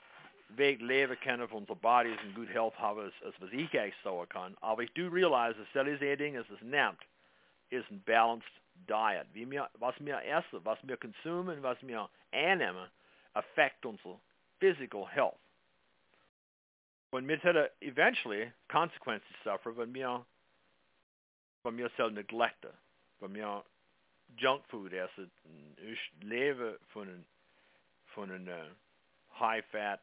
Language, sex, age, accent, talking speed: English, male, 50-69, American, 120 wpm